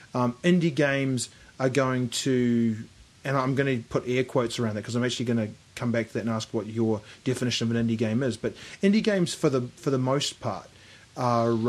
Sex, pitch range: male, 115-140 Hz